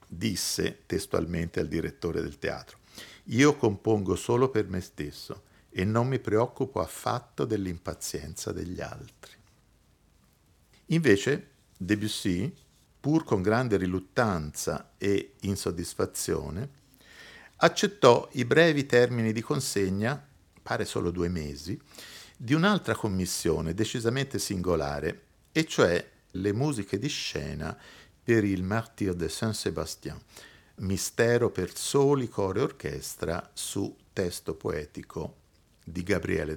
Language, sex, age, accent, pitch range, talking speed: Italian, male, 50-69, native, 90-125 Hz, 105 wpm